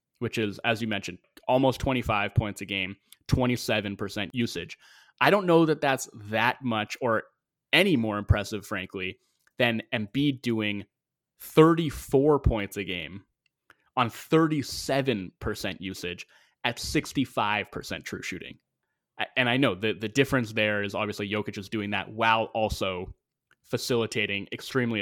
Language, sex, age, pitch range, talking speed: English, male, 20-39, 100-135 Hz, 130 wpm